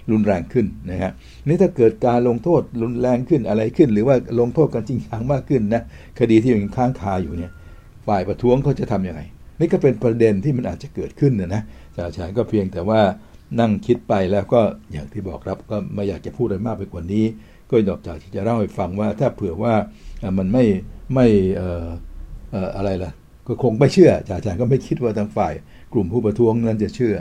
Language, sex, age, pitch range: Thai, male, 60-79, 95-120 Hz